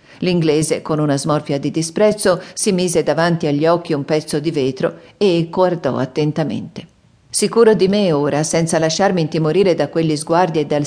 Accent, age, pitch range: native, 50-69, 160-215 Hz